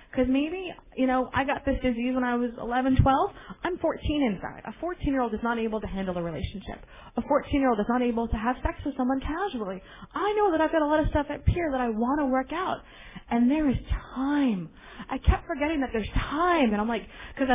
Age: 30-49